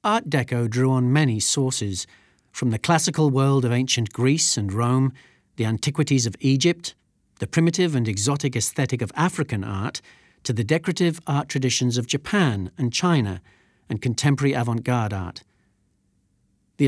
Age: 40-59